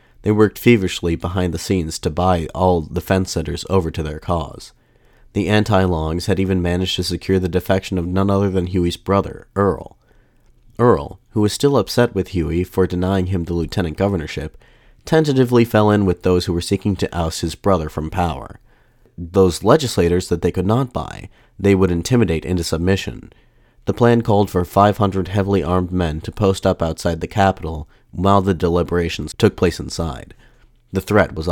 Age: 30-49